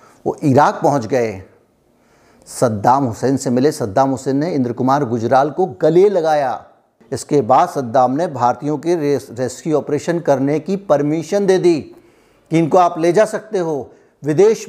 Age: 60-79